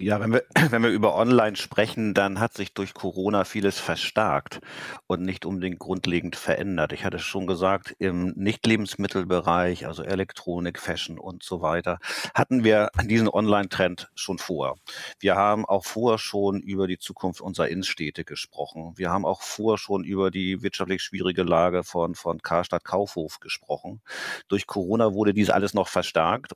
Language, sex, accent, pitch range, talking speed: German, male, German, 90-105 Hz, 160 wpm